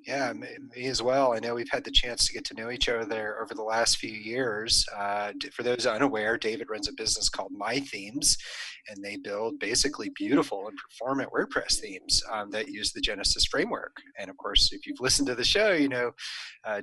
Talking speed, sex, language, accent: 215 wpm, male, English, American